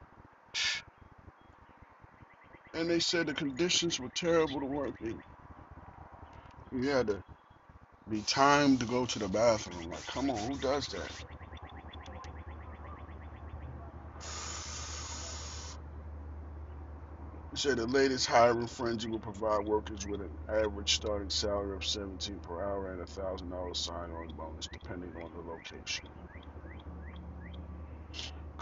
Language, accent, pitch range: English, American, 80-105 Hz